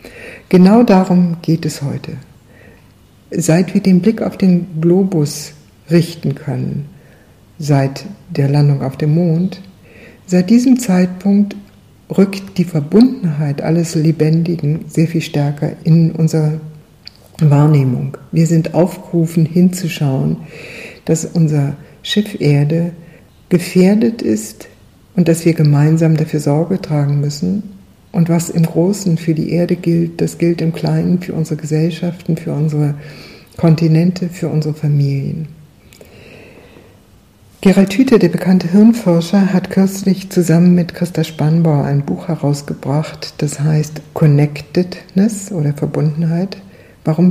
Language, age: German, 60-79